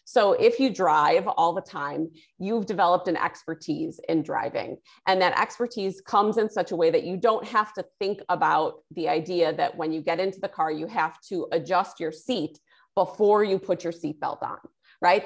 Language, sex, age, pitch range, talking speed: English, female, 30-49, 170-220 Hz, 195 wpm